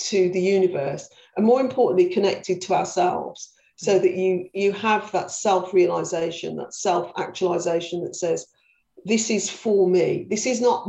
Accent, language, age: British, English, 50-69